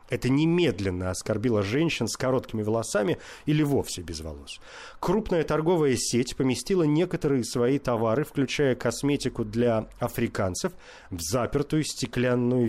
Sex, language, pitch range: male, Russian, 115-145 Hz